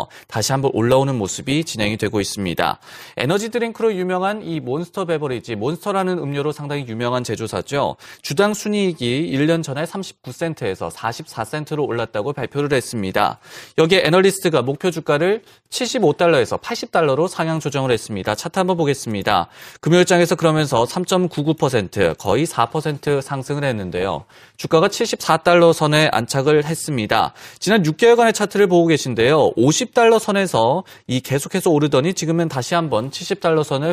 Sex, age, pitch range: male, 30-49, 125-180 Hz